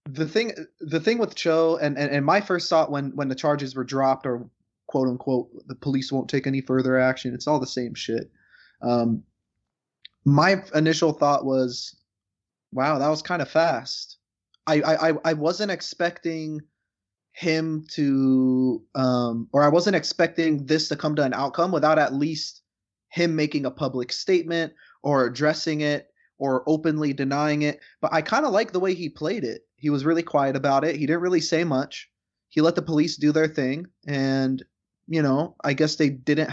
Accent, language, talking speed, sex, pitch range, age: American, English, 185 wpm, male, 130-155 Hz, 20-39